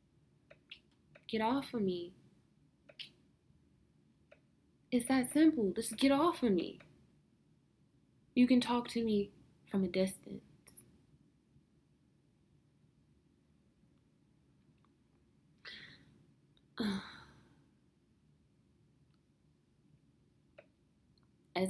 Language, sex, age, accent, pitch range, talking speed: English, female, 20-39, American, 180-200 Hz, 60 wpm